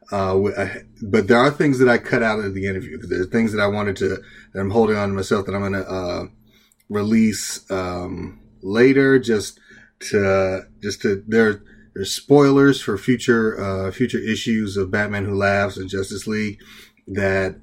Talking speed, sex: 190 wpm, male